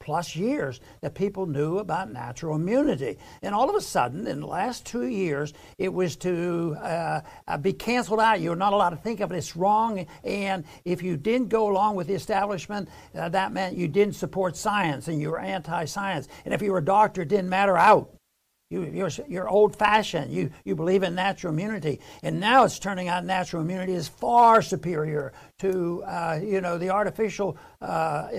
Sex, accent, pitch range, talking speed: male, American, 175-210 Hz, 190 wpm